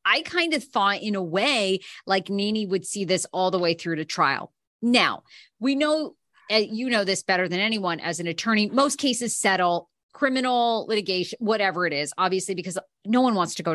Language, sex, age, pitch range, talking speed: English, female, 30-49, 180-245 Hz, 195 wpm